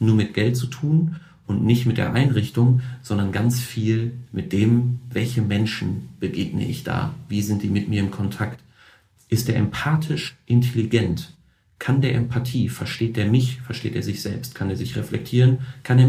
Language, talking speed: German, 175 wpm